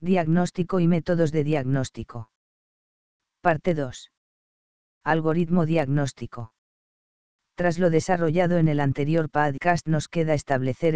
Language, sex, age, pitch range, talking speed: English, female, 40-59, 140-175 Hz, 105 wpm